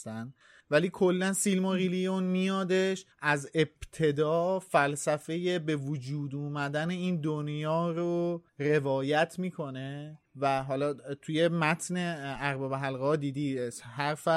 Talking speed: 100 wpm